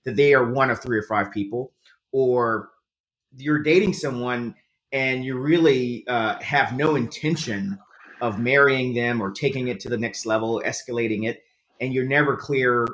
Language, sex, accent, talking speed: English, male, American, 165 wpm